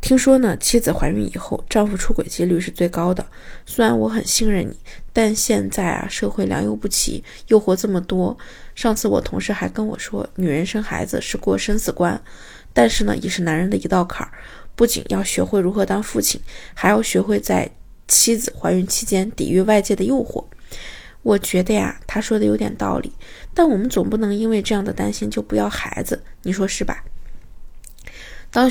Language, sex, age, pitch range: Chinese, female, 20-39, 185-230 Hz